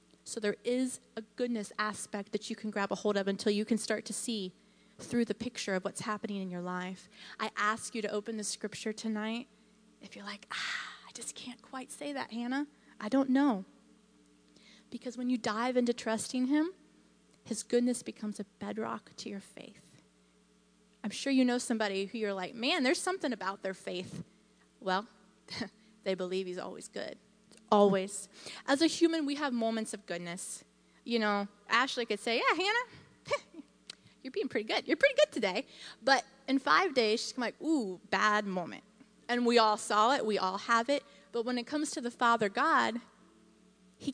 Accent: American